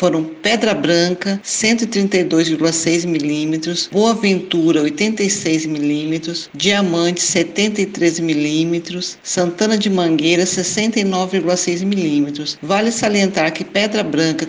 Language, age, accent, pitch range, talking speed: Portuguese, 50-69, Brazilian, 175-215 Hz, 90 wpm